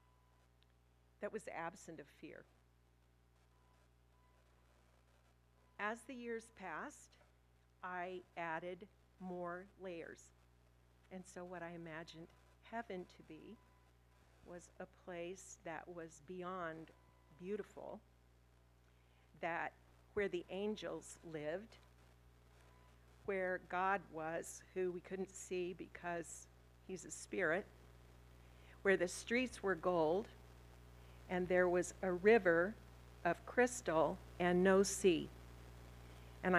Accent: American